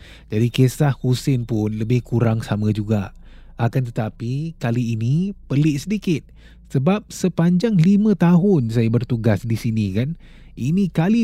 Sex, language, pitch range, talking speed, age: male, Malay, 110-155 Hz, 135 wpm, 30-49